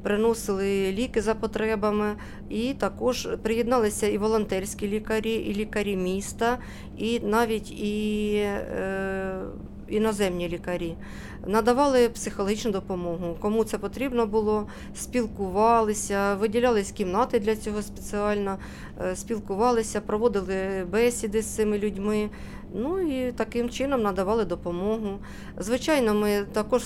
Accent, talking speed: native, 105 wpm